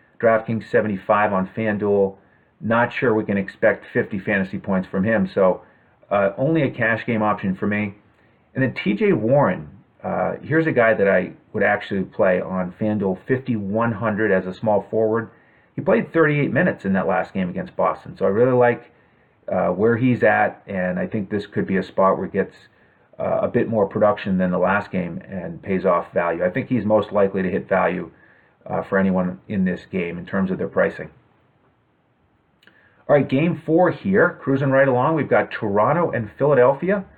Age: 30-49